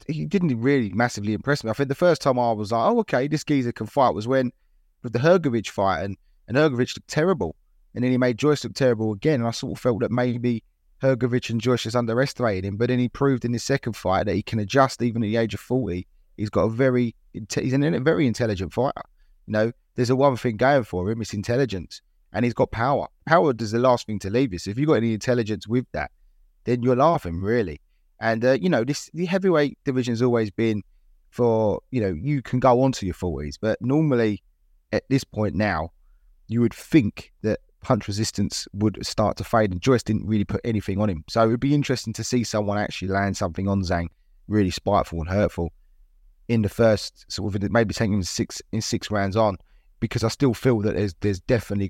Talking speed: 230 wpm